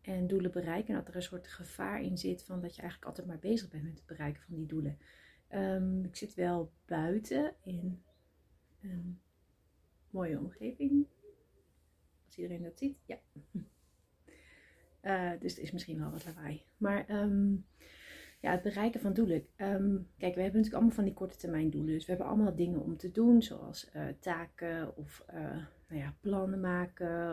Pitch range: 160-195 Hz